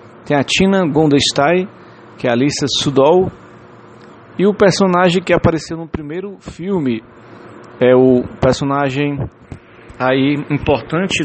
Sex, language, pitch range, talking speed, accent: male, English, 125-155 Hz, 115 wpm, Brazilian